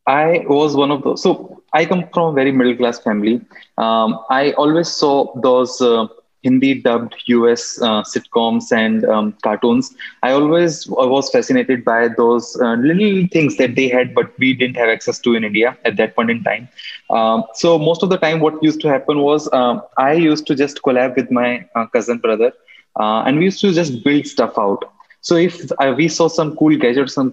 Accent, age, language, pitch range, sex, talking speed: Indian, 20-39, English, 120-155 Hz, male, 200 wpm